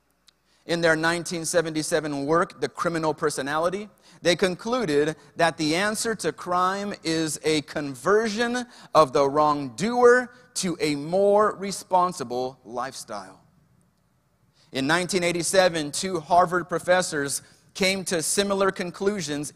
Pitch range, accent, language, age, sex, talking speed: 145-195 Hz, American, English, 30-49, male, 105 wpm